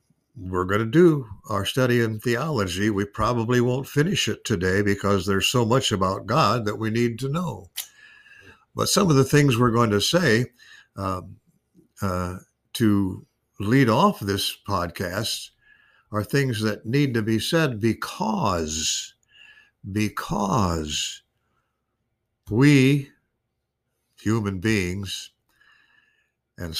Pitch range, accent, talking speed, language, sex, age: 100-130 Hz, American, 120 wpm, English, male, 60-79